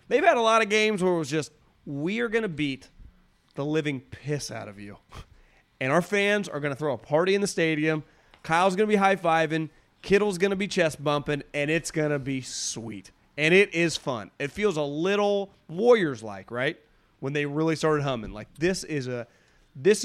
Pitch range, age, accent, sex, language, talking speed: 125-190 Hz, 30-49, American, male, English, 200 wpm